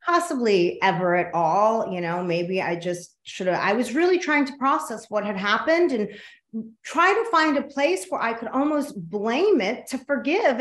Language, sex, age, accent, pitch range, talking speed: English, female, 40-59, American, 180-270 Hz, 190 wpm